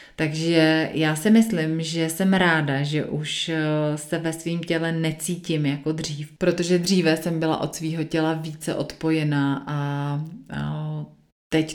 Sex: female